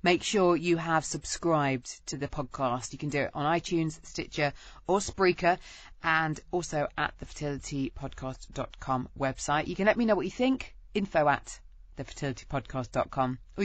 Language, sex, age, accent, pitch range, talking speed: English, female, 30-49, British, 140-180 Hz, 150 wpm